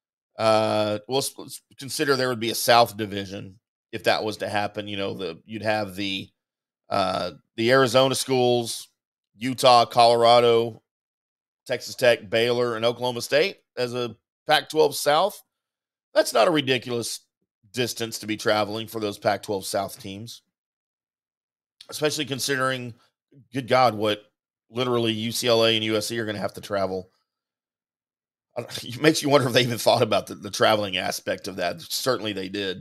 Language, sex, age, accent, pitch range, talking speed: English, male, 40-59, American, 110-130 Hz, 155 wpm